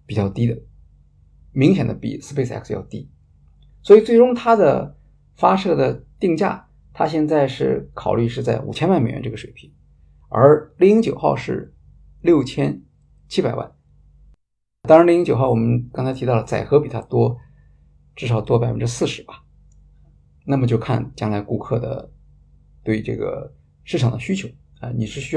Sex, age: male, 50-69